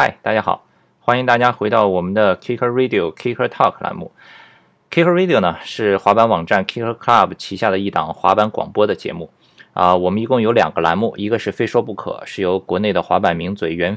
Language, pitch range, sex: Chinese, 95-120 Hz, male